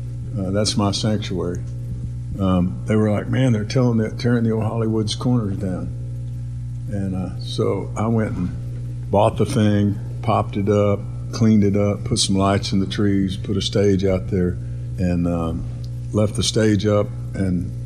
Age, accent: 60-79, American